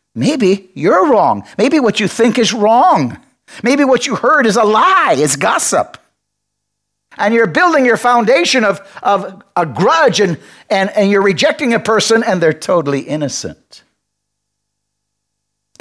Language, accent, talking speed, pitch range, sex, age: English, American, 145 wpm, 120-195 Hz, male, 50-69